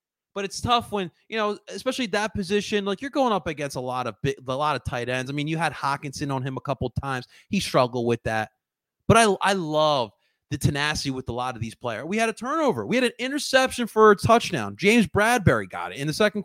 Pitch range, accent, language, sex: 130-200 Hz, American, English, male